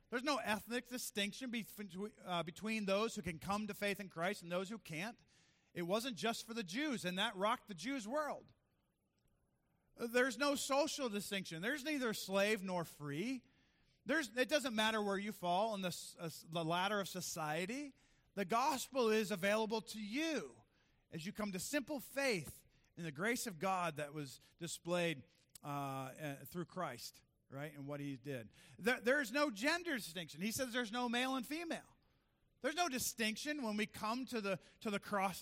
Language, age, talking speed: English, 40-59, 180 wpm